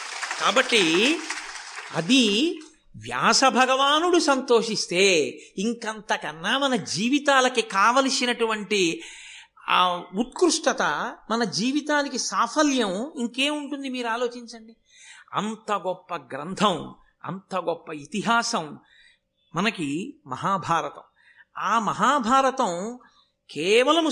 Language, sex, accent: Telugu, male, native